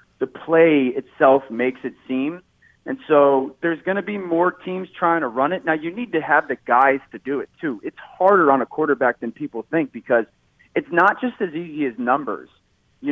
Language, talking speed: English, 210 wpm